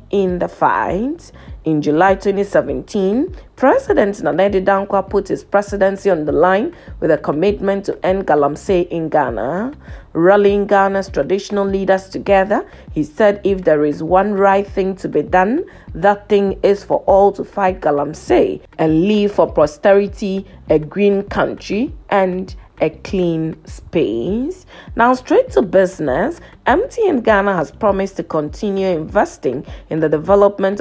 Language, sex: English, female